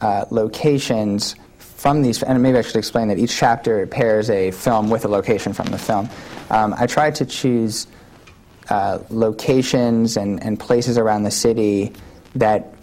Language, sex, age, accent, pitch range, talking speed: English, male, 30-49, American, 105-115 Hz, 165 wpm